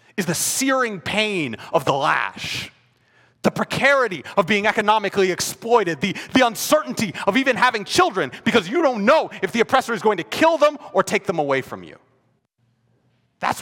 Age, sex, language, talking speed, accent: 30-49, male, English, 170 wpm, American